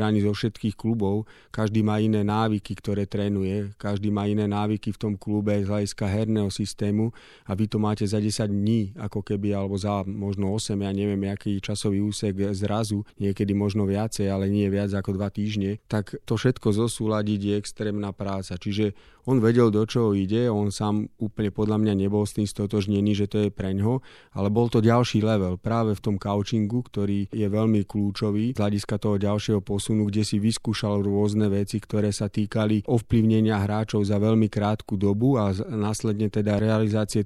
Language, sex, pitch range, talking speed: Slovak, male, 100-110 Hz, 180 wpm